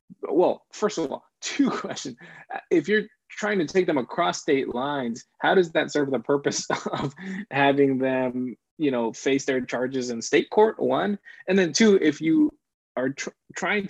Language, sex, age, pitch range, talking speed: English, male, 20-39, 125-180 Hz, 175 wpm